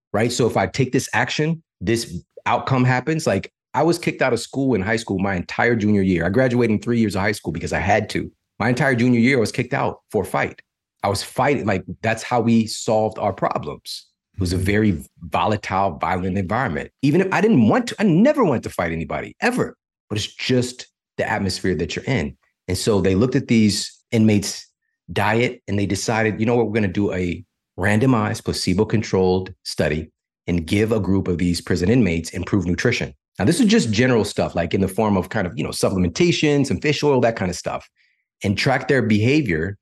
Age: 30-49